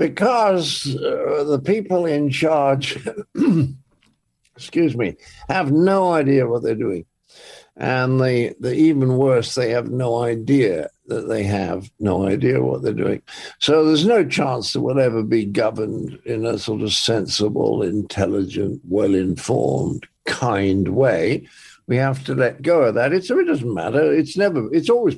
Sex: male